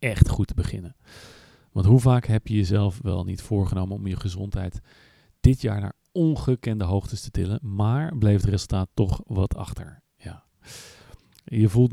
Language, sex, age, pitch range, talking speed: Dutch, male, 40-59, 100-120 Hz, 160 wpm